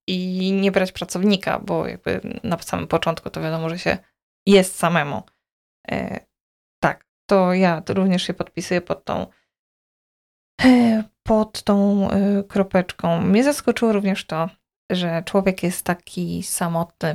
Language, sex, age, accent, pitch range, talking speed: Polish, female, 20-39, native, 185-220 Hz, 125 wpm